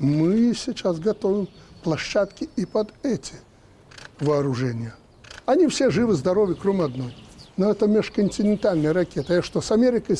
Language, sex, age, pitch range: Russian, male, 60-79, 140-220 Hz